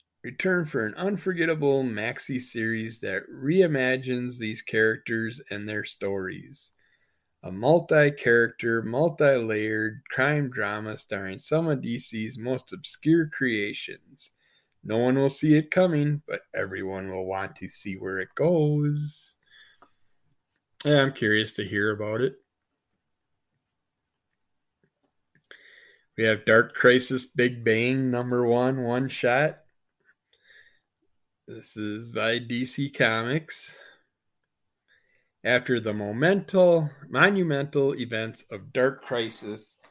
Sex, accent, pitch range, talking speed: male, American, 110-140 Hz, 100 wpm